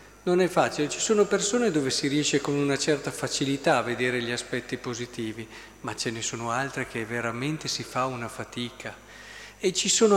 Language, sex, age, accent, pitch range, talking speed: Italian, male, 40-59, native, 130-180 Hz, 190 wpm